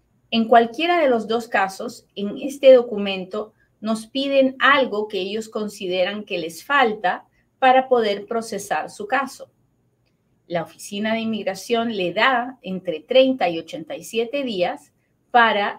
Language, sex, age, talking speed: Spanish, female, 40-59, 135 wpm